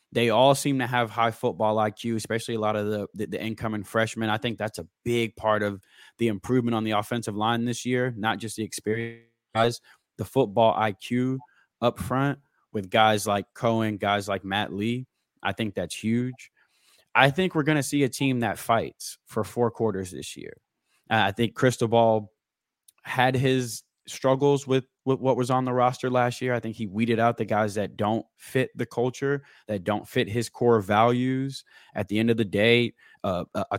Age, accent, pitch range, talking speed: 20-39, American, 110-125 Hz, 195 wpm